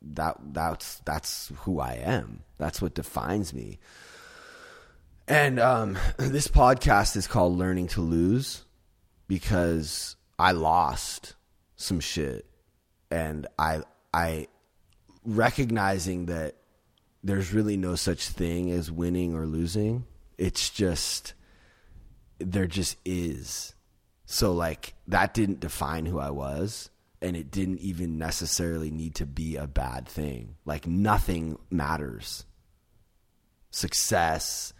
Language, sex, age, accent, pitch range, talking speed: English, male, 20-39, American, 75-95 Hz, 115 wpm